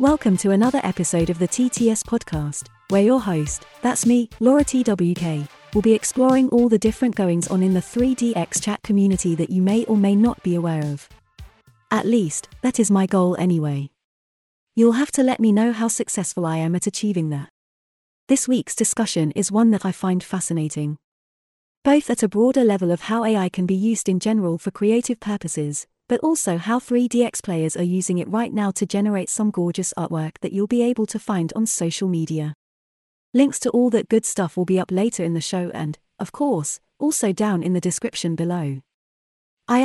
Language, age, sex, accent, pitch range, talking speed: English, 30-49, female, British, 170-230 Hz, 195 wpm